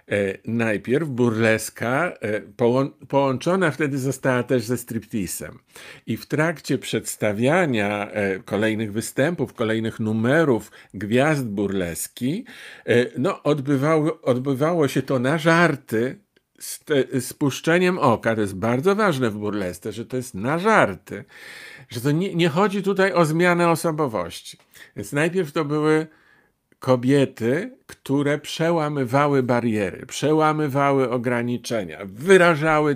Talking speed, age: 105 wpm, 50-69